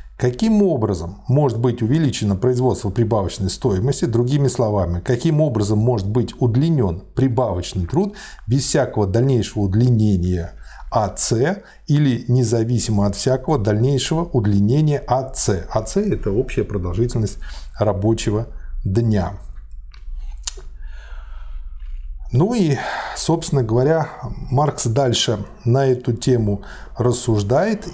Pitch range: 100-145 Hz